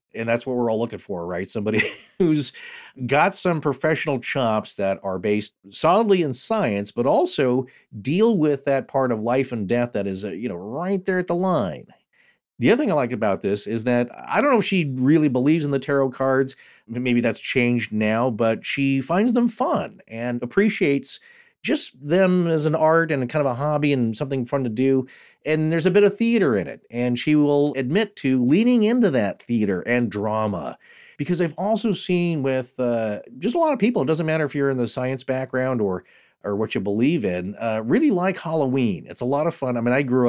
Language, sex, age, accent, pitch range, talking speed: English, male, 40-59, American, 110-160 Hz, 215 wpm